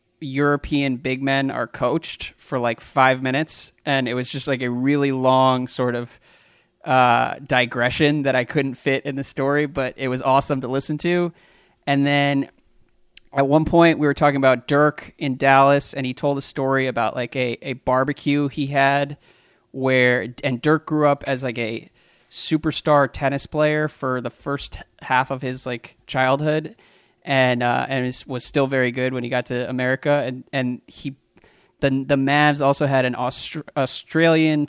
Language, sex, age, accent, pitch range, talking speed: English, male, 20-39, American, 125-140 Hz, 175 wpm